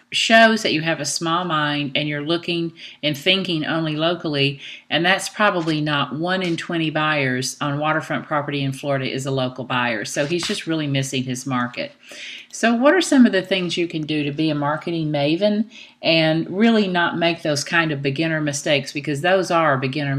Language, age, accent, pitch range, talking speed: English, 50-69, American, 145-180 Hz, 195 wpm